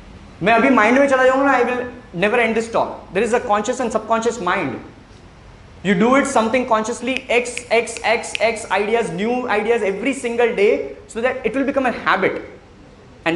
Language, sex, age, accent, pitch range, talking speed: English, male, 20-39, Indian, 200-260 Hz, 160 wpm